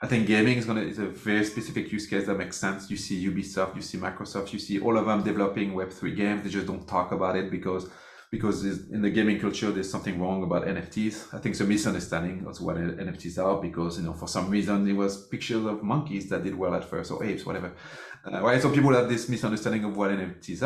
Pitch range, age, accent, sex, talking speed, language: 95-110 Hz, 30-49, French, male, 240 wpm, English